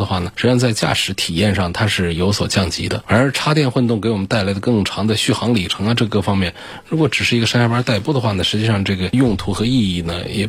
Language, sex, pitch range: Chinese, male, 95-125 Hz